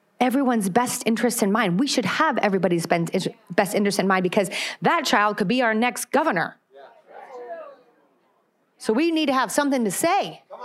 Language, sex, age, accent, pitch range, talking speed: English, female, 30-49, American, 200-285 Hz, 165 wpm